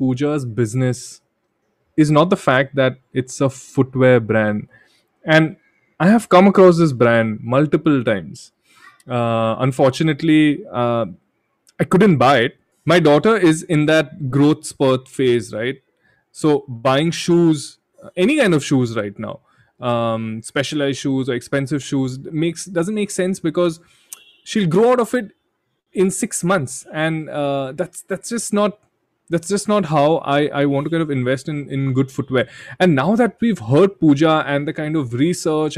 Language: English